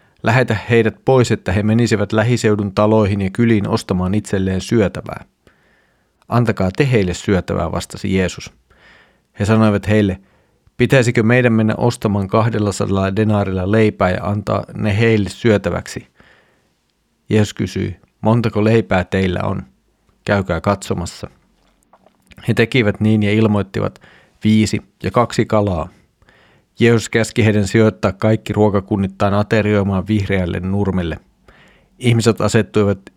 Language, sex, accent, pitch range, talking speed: Finnish, male, native, 100-110 Hz, 110 wpm